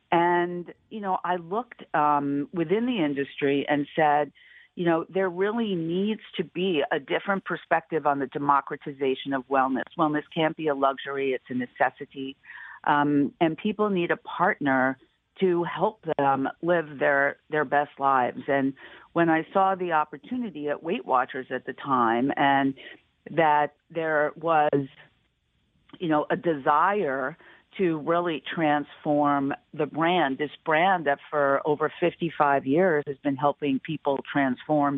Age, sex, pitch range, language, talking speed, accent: 50-69, female, 140-170 Hz, English, 145 wpm, American